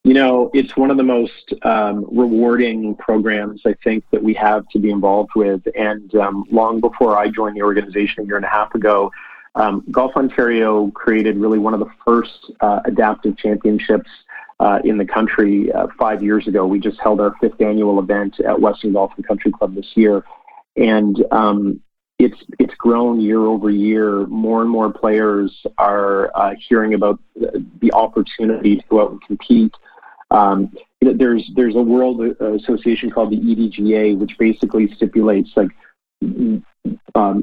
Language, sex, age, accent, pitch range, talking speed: English, male, 40-59, American, 105-115 Hz, 170 wpm